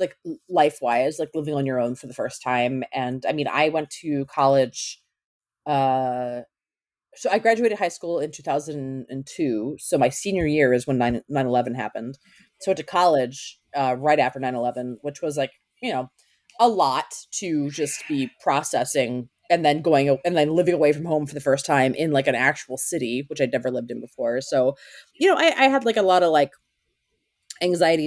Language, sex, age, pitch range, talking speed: English, female, 30-49, 130-165 Hz, 200 wpm